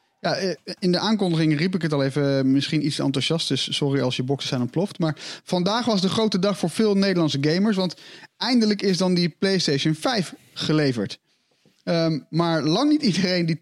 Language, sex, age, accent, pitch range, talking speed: Dutch, male, 30-49, Dutch, 145-185 Hz, 190 wpm